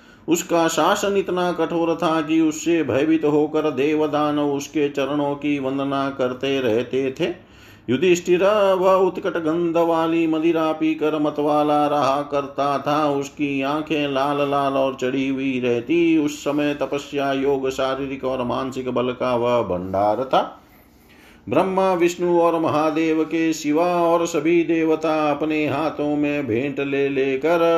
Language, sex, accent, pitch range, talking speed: Hindi, male, native, 140-165 Hz, 135 wpm